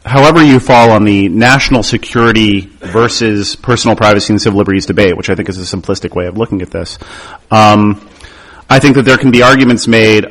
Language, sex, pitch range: English, male, 100-120 Hz